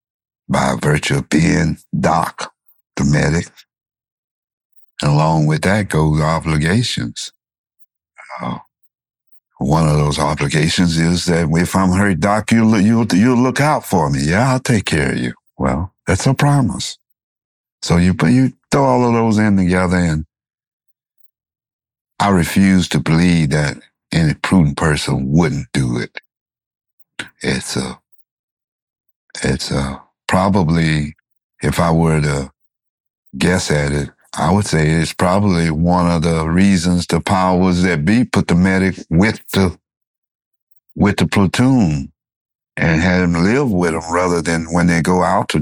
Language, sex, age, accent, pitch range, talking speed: English, male, 60-79, American, 75-95 Hz, 145 wpm